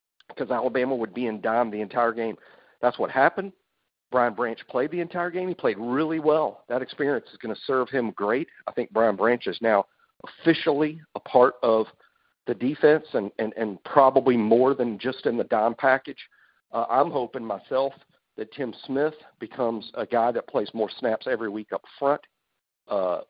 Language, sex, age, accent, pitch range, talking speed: English, male, 50-69, American, 115-150 Hz, 185 wpm